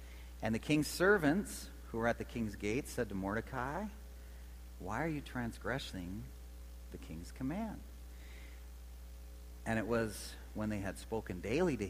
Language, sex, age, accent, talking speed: English, male, 40-59, American, 145 wpm